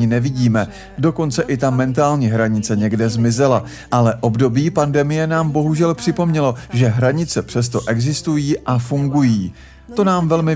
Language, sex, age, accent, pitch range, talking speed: Czech, male, 40-59, native, 115-145 Hz, 130 wpm